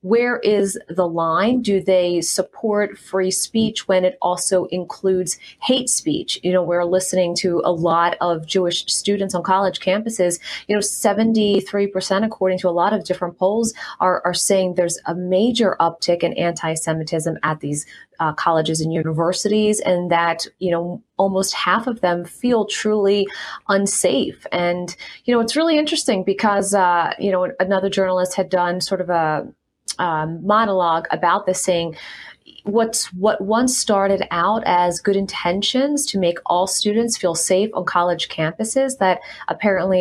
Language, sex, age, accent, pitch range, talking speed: English, female, 30-49, American, 175-205 Hz, 155 wpm